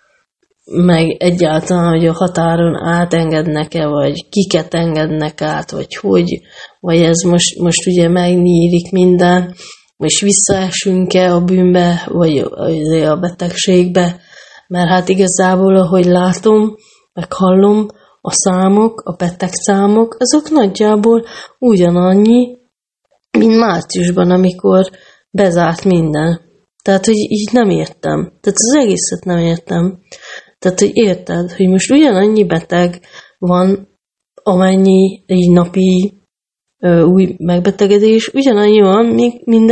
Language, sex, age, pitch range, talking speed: Hungarian, female, 30-49, 175-200 Hz, 110 wpm